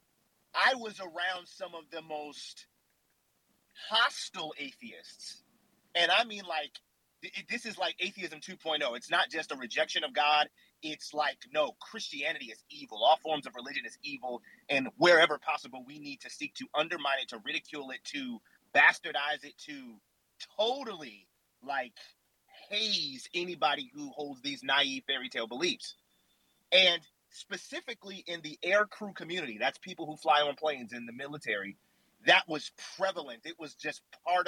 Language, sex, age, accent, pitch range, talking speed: English, male, 30-49, American, 155-235 Hz, 155 wpm